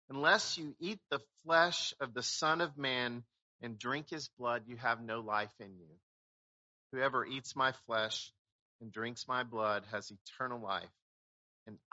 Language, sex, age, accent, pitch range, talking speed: English, male, 50-69, American, 100-130 Hz, 160 wpm